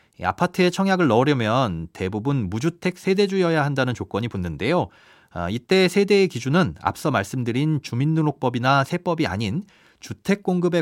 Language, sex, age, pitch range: Korean, male, 30-49, 120-175 Hz